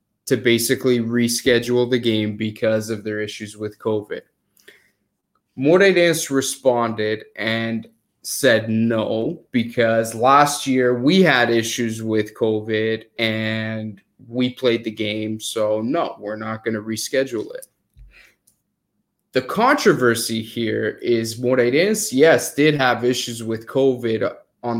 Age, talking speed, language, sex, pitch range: 20-39, 125 wpm, English, male, 115-135 Hz